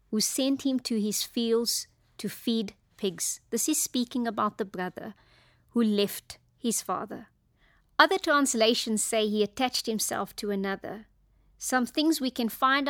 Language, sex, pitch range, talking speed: English, female, 205-255 Hz, 150 wpm